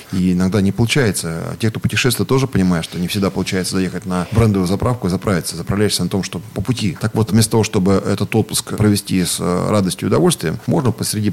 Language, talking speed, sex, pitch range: Russian, 205 wpm, male, 95-110 Hz